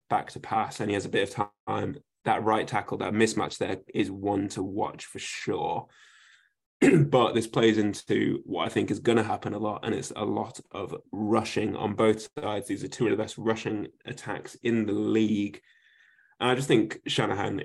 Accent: British